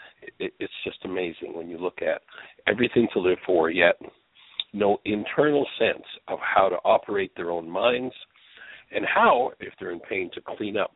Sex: male